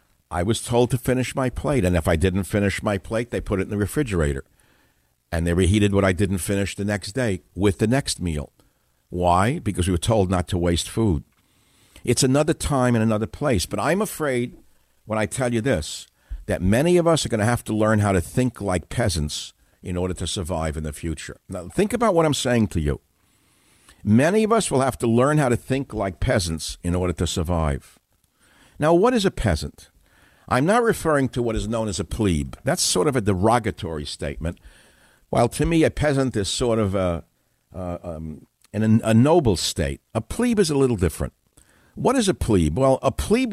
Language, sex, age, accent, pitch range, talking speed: English, male, 60-79, American, 85-120 Hz, 210 wpm